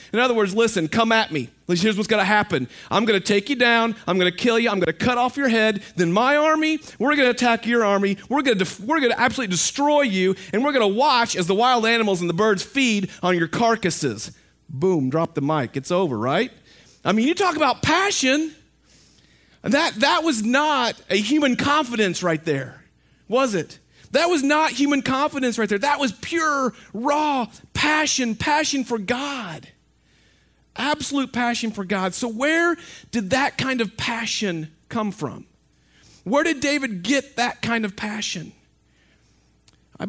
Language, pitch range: English, 185-265 Hz